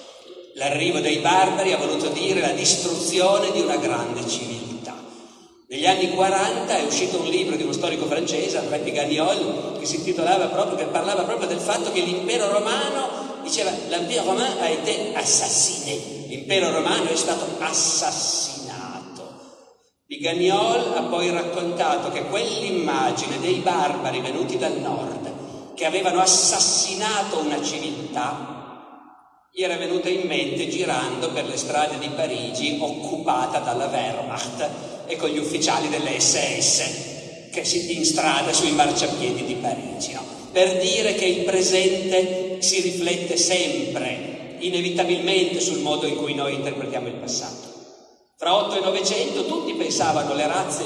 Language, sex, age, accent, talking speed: Italian, male, 50-69, native, 135 wpm